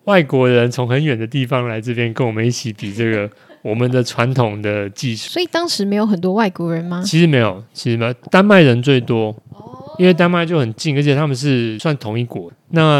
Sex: male